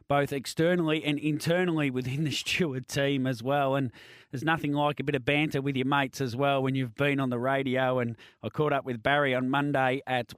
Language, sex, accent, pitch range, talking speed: English, male, Australian, 125-165 Hz, 220 wpm